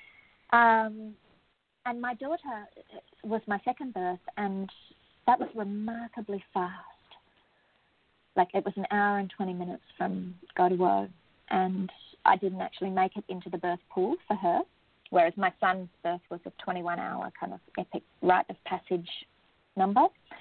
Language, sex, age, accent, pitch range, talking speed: English, female, 30-49, Australian, 180-205 Hz, 145 wpm